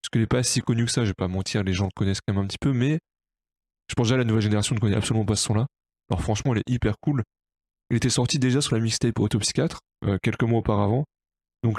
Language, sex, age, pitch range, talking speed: French, male, 20-39, 105-125 Hz, 280 wpm